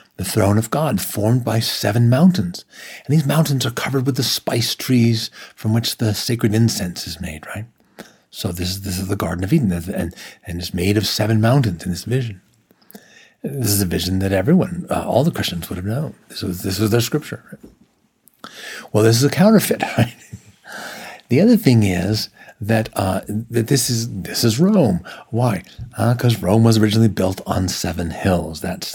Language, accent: English, American